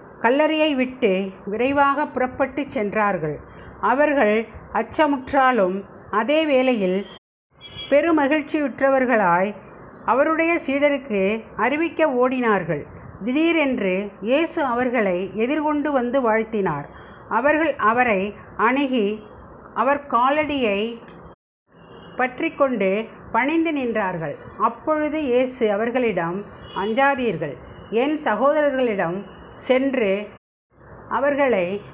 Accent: native